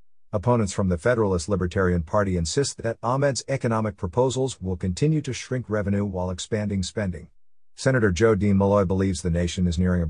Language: English